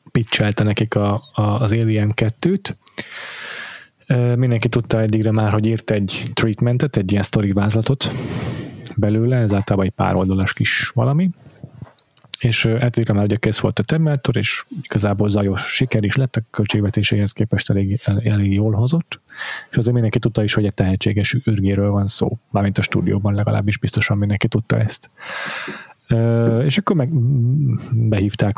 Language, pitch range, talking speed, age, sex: Hungarian, 105-130 Hz, 155 wpm, 30-49, male